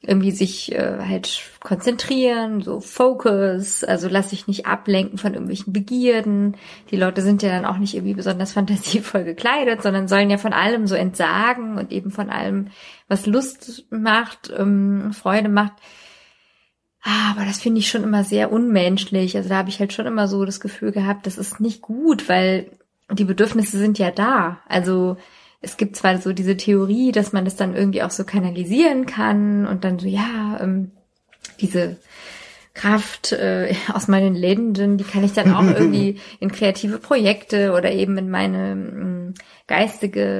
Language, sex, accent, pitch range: German, female, German, 190-210 Hz